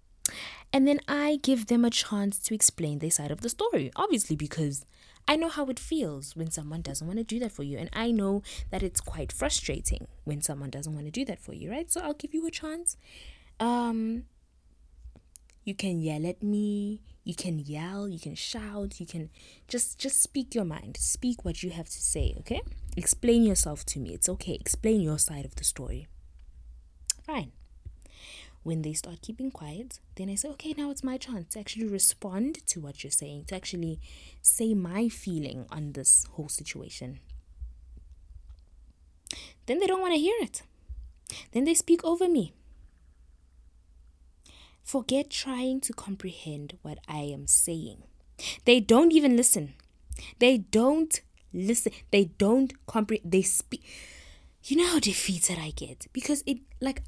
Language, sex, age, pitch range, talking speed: English, female, 20-39, 145-240 Hz, 170 wpm